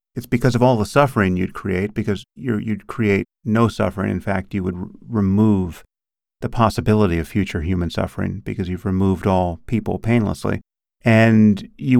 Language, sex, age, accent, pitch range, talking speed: English, male, 40-59, American, 95-120 Hz, 160 wpm